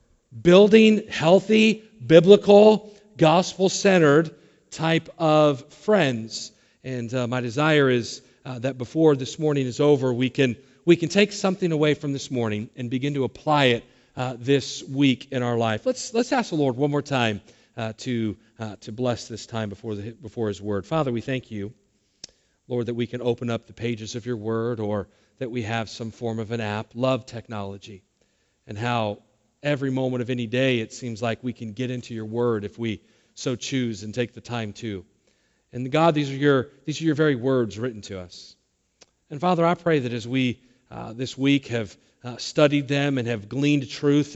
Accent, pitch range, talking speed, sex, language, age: American, 115-145 Hz, 190 wpm, male, English, 40-59